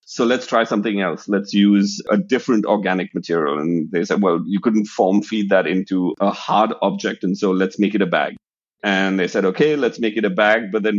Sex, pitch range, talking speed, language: male, 95-110 Hz, 230 wpm, English